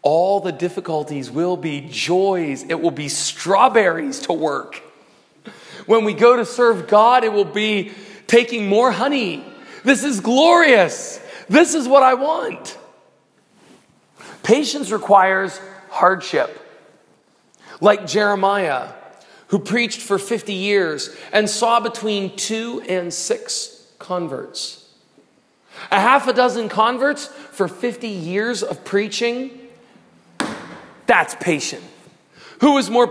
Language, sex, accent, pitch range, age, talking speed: English, male, American, 180-245 Hz, 40-59, 115 wpm